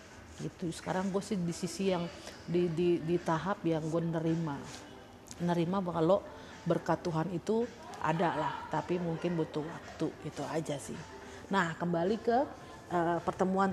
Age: 40-59